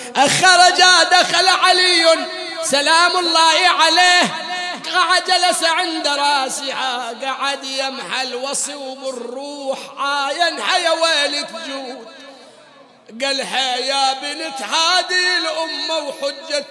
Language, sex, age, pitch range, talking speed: English, male, 50-69, 275-335 Hz, 85 wpm